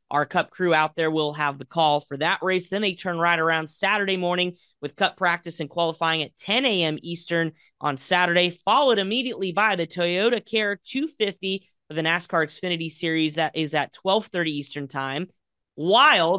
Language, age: English, 30-49